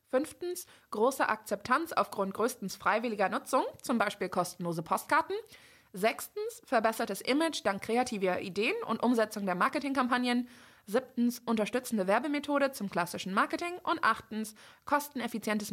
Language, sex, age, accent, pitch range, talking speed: German, female, 20-39, German, 195-265 Hz, 115 wpm